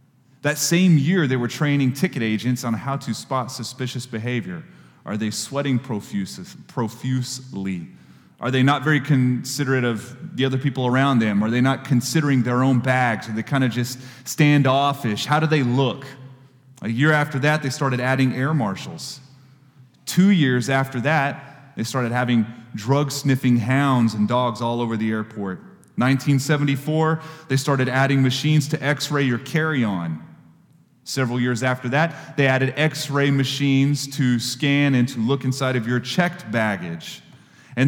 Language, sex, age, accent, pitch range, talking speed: English, male, 30-49, American, 120-145 Hz, 155 wpm